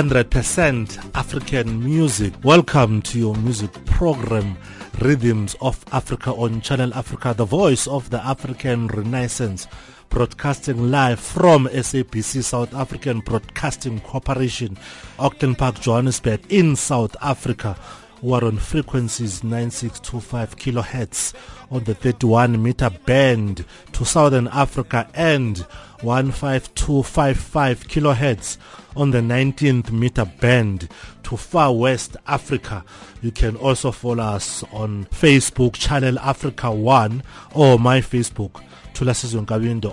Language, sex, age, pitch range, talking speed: English, male, 30-49, 115-135 Hz, 115 wpm